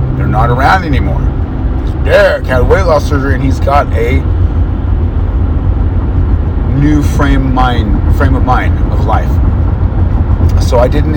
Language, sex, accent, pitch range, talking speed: English, male, American, 75-90 Hz, 135 wpm